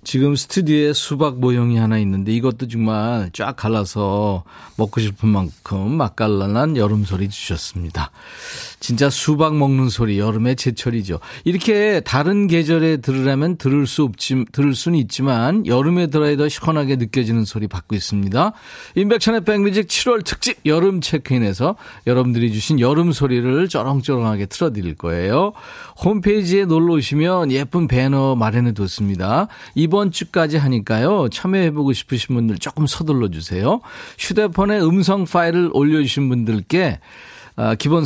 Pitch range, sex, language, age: 110-165 Hz, male, Korean, 40-59